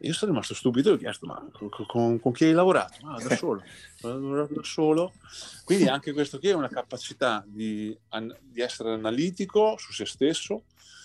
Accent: native